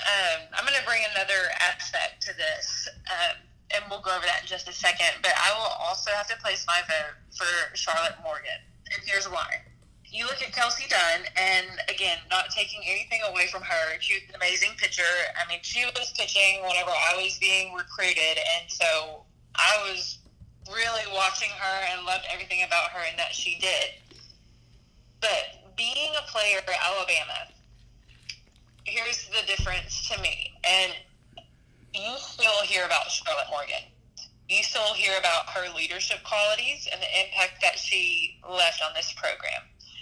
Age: 20-39